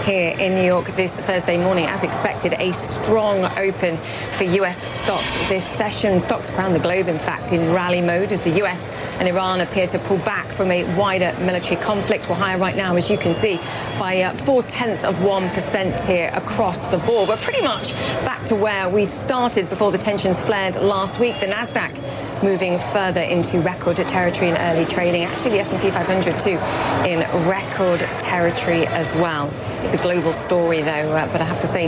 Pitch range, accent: 170-195 Hz, British